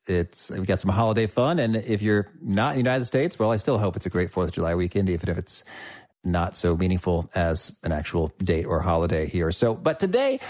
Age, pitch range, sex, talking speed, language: 40-59, 95-135 Hz, male, 235 wpm, English